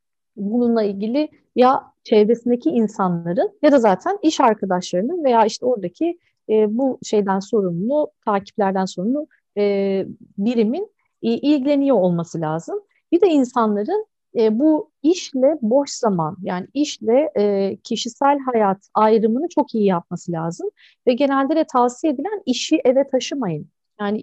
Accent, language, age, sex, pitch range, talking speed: native, Turkish, 50-69, female, 215-295 Hz, 115 wpm